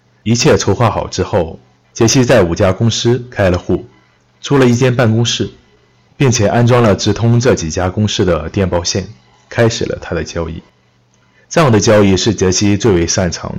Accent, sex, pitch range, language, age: native, male, 85-110 Hz, Chinese, 30-49